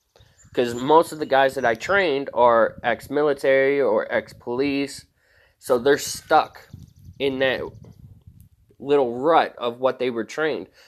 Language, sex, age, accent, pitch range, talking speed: English, male, 20-39, American, 120-150 Hz, 130 wpm